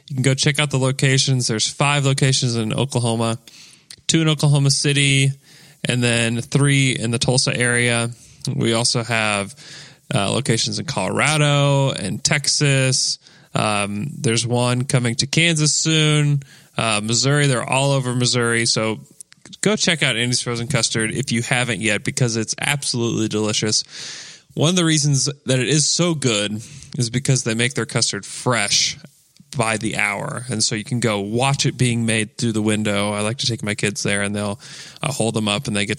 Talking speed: 180 wpm